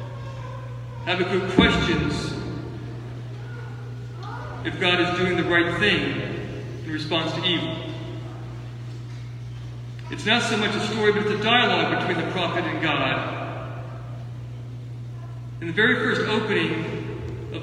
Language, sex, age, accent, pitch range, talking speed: English, male, 50-69, American, 120-170 Hz, 115 wpm